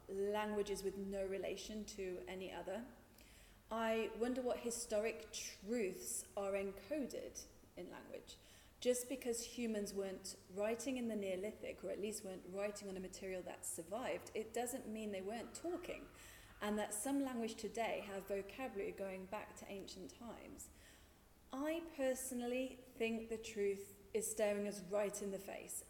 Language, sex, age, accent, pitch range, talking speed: English, female, 30-49, British, 195-230 Hz, 150 wpm